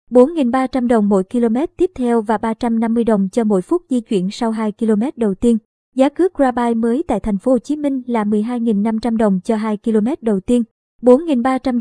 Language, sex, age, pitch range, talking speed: Vietnamese, male, 20-39, 220-255 Hz, 195 wpm